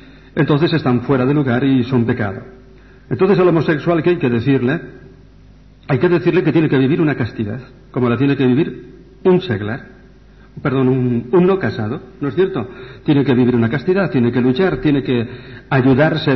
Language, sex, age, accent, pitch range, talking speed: Spanish, male, 60-79, Spanish, 120-150 Hz, 185 wpm